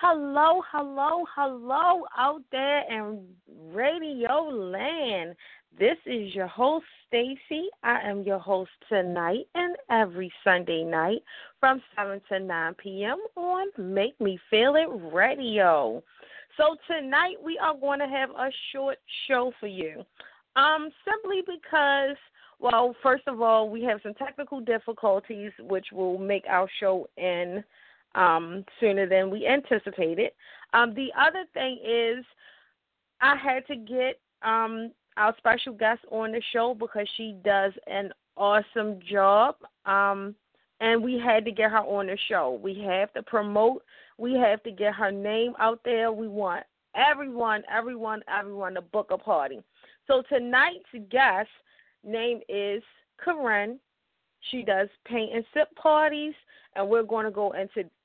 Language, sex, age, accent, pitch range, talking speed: English, female, 30-49, American, 200-275 Hz, 145 wpm